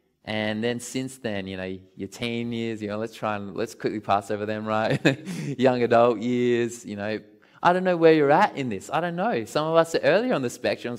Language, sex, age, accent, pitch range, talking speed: English, male, 20-39, Australian, 110-180 Hz, 240 wpm